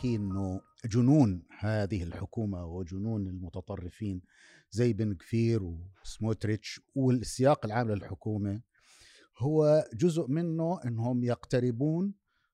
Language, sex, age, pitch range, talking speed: Arabic, male, 50-69, 115-155 Hz, 85 wpm